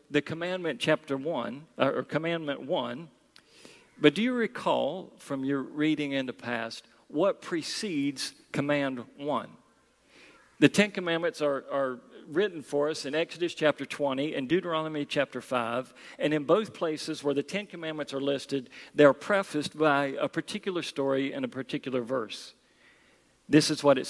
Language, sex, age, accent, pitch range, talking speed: English, male, 50-69, American, 140-175 Hz, 155 wpm